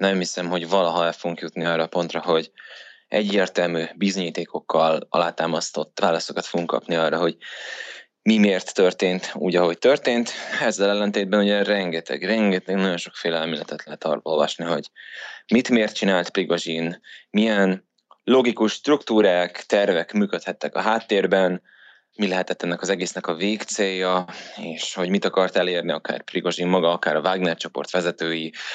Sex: male